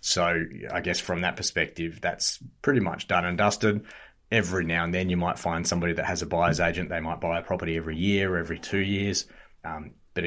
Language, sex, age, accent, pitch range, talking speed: English, male, 30-49, Australian, 85-95 Hz, 220 wpm